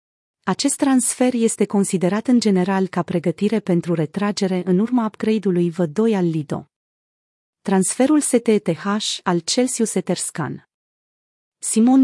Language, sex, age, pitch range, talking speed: Romanian, female, 30-49, 185-230 Hz, 110 wpm